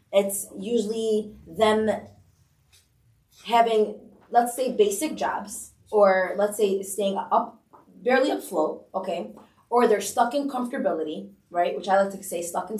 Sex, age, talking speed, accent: female, 20-39, 135 wpm, American